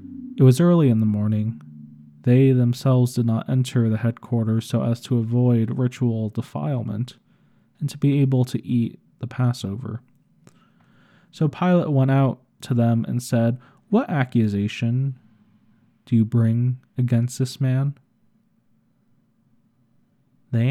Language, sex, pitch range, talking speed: English, male, 115-140 Hz, 130 wpm